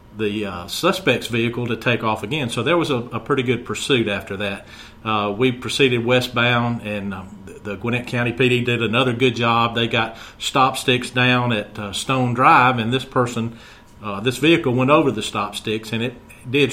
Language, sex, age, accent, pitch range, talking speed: English, male, 40-59, American, 110-125 Hz, 200 wpm